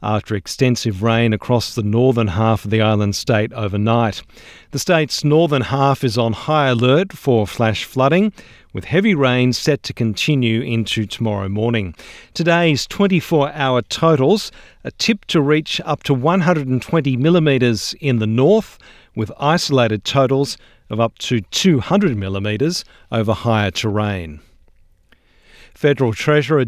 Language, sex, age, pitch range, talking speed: English, male, 50-69, 115-155 Hz, 135 wpm